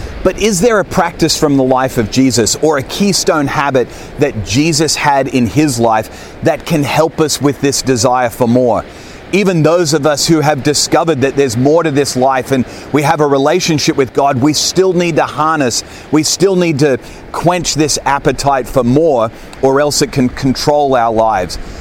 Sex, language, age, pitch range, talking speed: male, English, 30-49, 125-160 Hz, 195 wpm